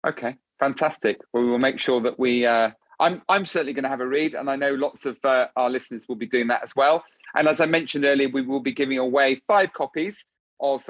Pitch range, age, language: 130-165 Hz, 40-59, English